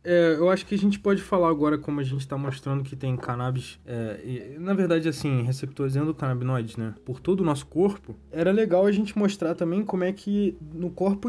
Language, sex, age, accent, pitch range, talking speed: Portuguese, male, 20-39, Brazilian, 130-165 Hz, 200 wpm